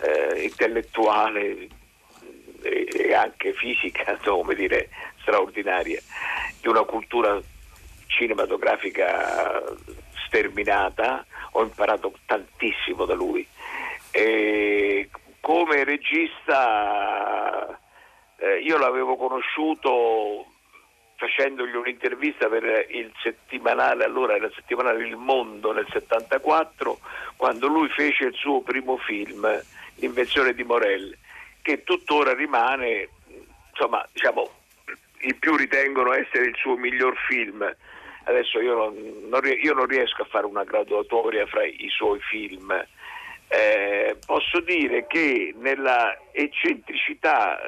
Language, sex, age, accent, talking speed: Italian, male, 50-69, native, 100 wpm